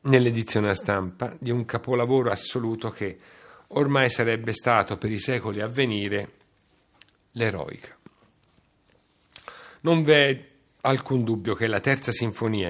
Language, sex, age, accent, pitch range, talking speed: Italian, male, 50-69, native, 100-130 Hz, 120 wpm